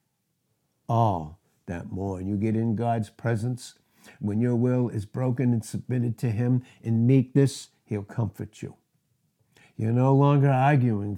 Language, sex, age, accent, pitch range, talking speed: English, male, 60-79, American, 105-135 Hz, 140 wpm